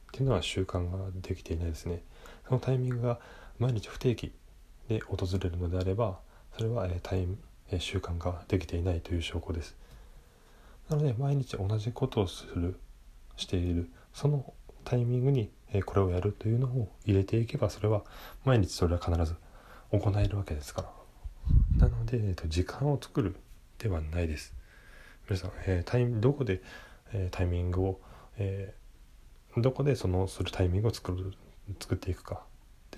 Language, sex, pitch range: Japanese, male, 90-110 Hz